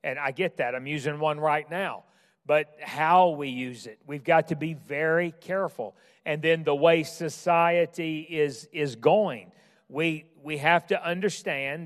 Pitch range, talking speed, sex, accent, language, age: 155-190 Hz, 165 wpm, male, American, English, 40-59